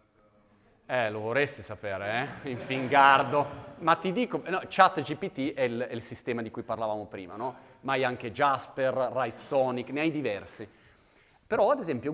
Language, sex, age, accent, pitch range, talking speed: Italian, male, 30-49, native, 120-150 Hz, 160 wpm